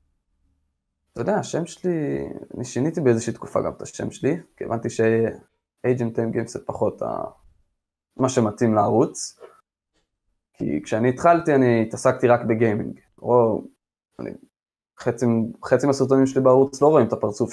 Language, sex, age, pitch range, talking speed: Hebrew, male, 20-39, 110-140 Hz, 130 wpm